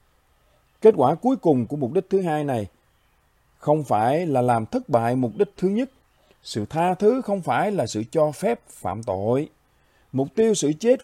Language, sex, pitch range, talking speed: Vietnamese, male, 125-210 Hz, 190 wpm